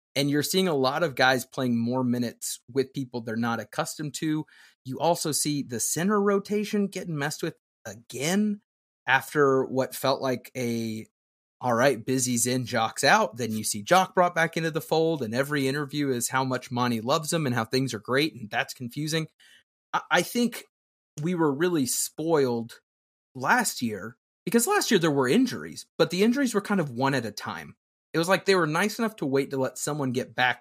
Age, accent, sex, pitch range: 30-49, American, male, 120-170 Hz